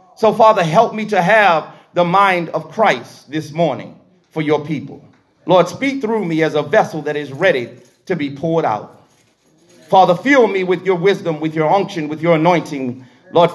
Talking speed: 185 wpm